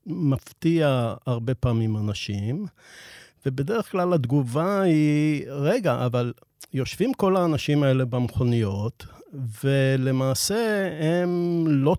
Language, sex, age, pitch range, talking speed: Hebrew, male, 50-69, 130-170 Hz, 90 wpm